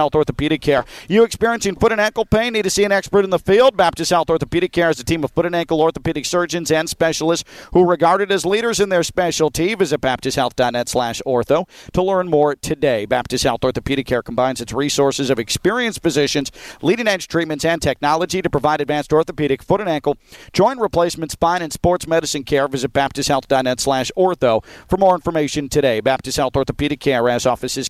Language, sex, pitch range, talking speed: English, male, 135-165 Hz, 200 wpm